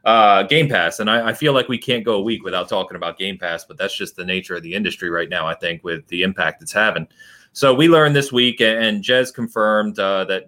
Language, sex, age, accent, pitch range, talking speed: English, male, 30-49, American, 95-125 Hz, 260 wpm